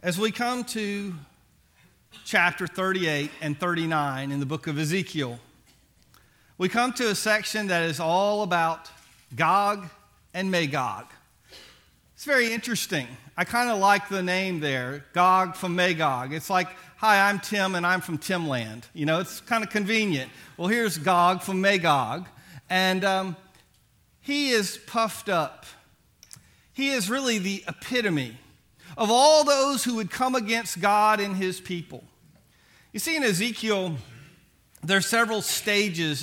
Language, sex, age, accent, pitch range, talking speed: English, male, 50-69, American, 165-220 Hz, 145 wpm